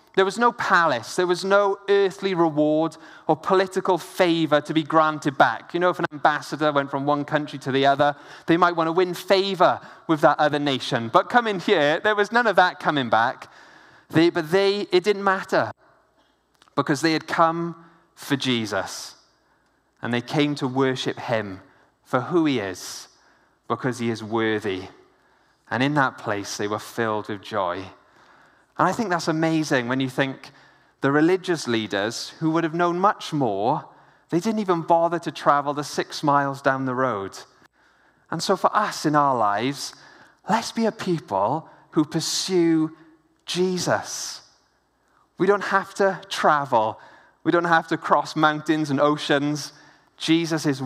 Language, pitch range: English, 140-175 Hz